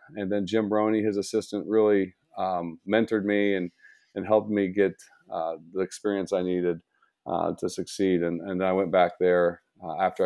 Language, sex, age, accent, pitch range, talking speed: English, male, 40-59, American, 90-100 Hz, 185 wpm